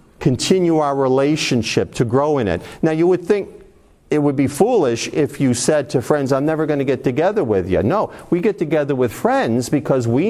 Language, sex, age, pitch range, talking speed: English, male, 50-69, 130-170 Hz, 210 wpm